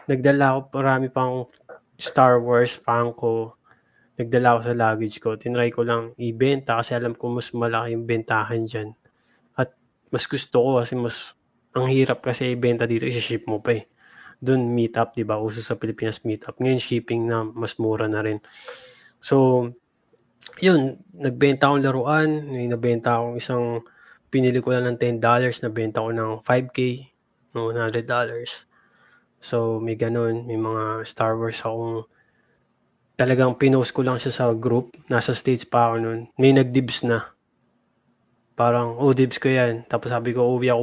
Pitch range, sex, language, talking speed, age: 115-125 Hz, male, Filipino, 155 wpm, 20-39